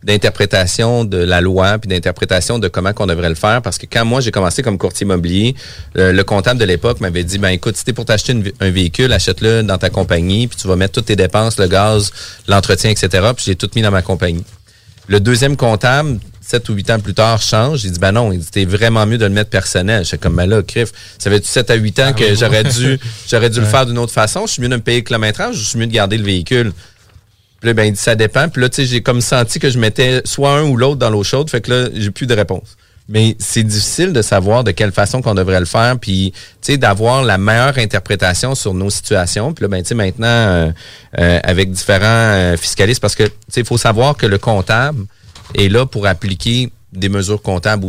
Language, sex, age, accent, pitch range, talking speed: French, male, 40-59, Canadian, 95-120 Hz, 240 wpm